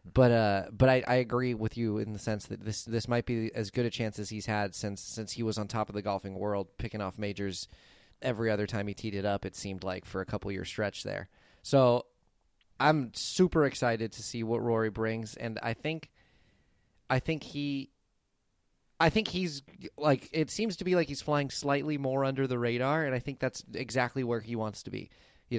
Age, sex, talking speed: 30-49, male, 220 wpm